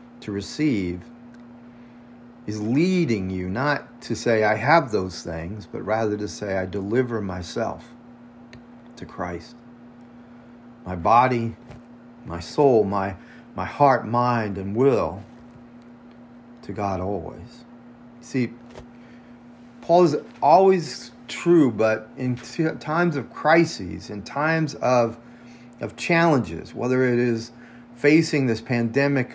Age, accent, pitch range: 40-59, American, 110-130 Hz